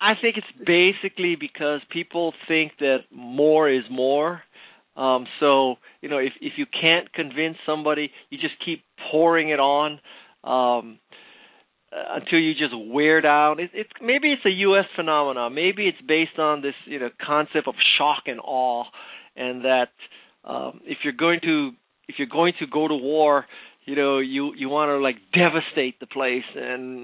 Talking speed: 170 wpm